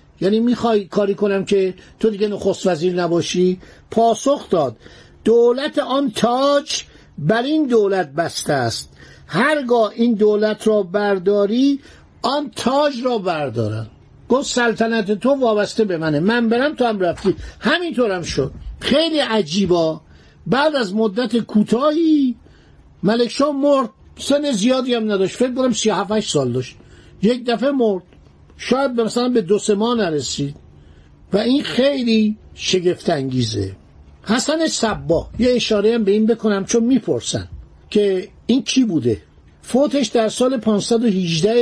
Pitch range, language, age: 180-240 Hz, Persian, 50-69